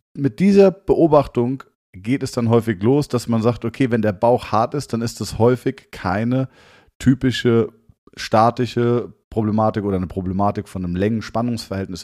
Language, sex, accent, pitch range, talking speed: German, male, German, 100-130 Hz, 155 wpm